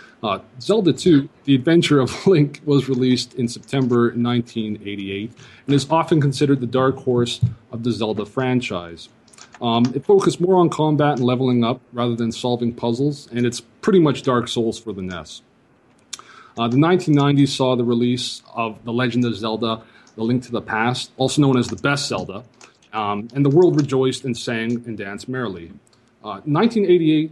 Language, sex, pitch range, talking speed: English, male, 120-145 Hz, 170 wpm